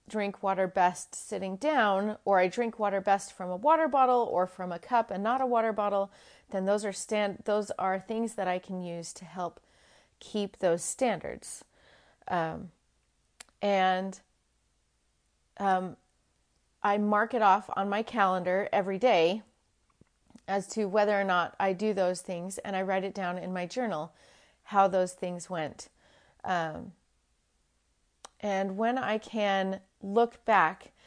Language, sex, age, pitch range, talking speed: English, female, 30-49, 185-230 Hz, 155 wpm